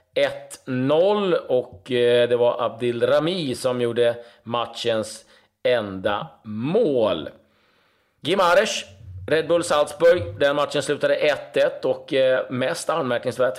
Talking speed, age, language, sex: 95 wpm, 30-49, Swedish, male